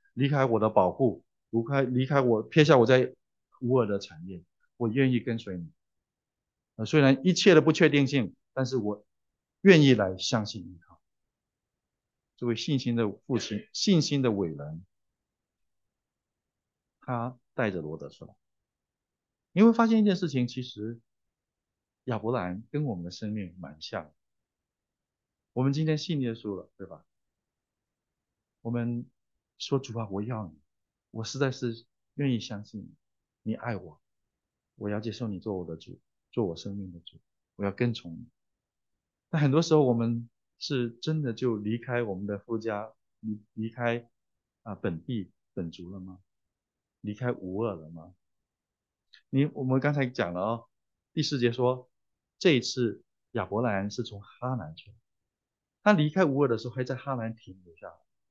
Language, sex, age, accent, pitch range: English, male, 50-69, Chinese, 100-130 Hz